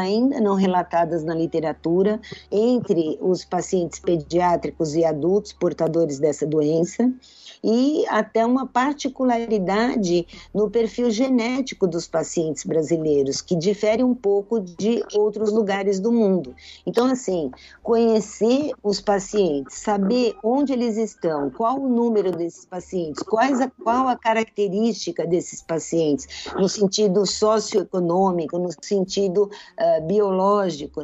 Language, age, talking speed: Portuguese, 50-69, 110 wpm